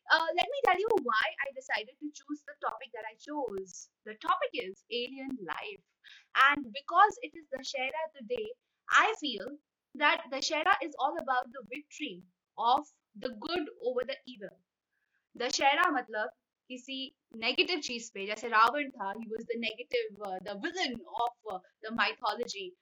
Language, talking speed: Hindi, 170 wpm